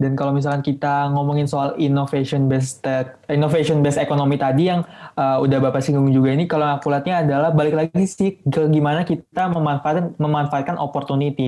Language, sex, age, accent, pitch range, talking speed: Indonesian, male, 20-39, native, 135-155 Hz, 165 wpm